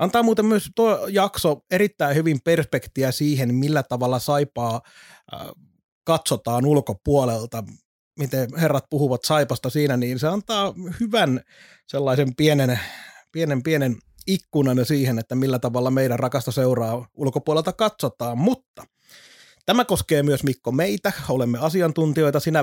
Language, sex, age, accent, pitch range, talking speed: Finnish, male, 30-49, native, 130-160 Hz, 115 wpm